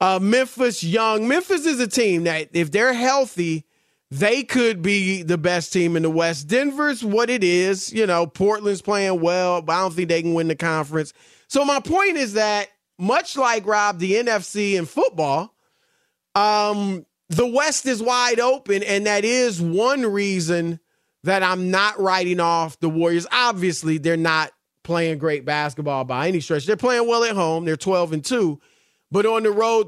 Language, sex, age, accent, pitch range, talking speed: English, male, 30-49, American, 165-220 Hz, 180 wpm